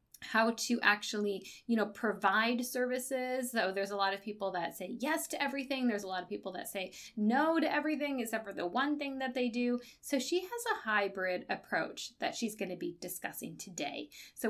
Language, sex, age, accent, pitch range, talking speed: English, female, 20-39, American, 205-275 Hz, 205 wpm